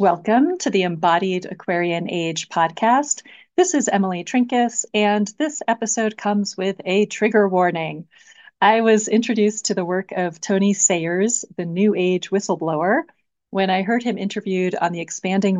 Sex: female